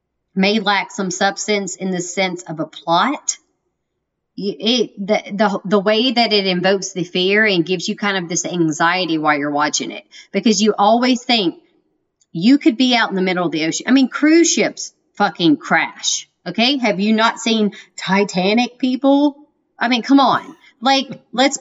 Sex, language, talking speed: female, English, 180 wpm